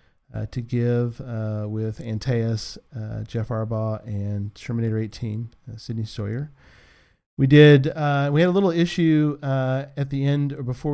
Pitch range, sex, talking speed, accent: 110-145 Hz, male, 160 wpm, American